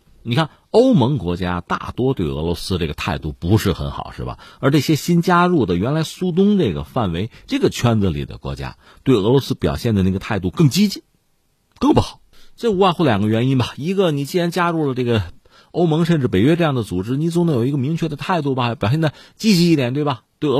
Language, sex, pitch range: Chinese, male, 95-155 Hz